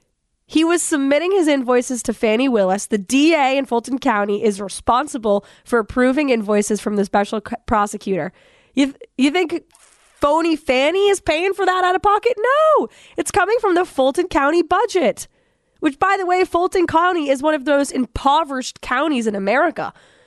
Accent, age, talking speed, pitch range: American, 20-39, 175 wpm, 220-315 Hz